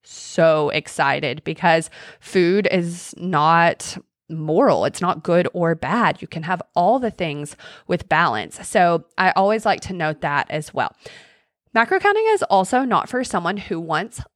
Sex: female